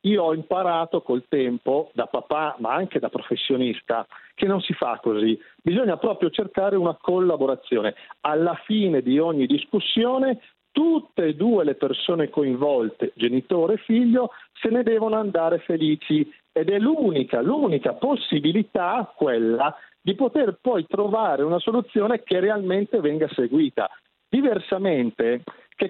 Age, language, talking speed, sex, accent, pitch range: 50-69, Italian, 135 wpm, male, native, 135-195 Hz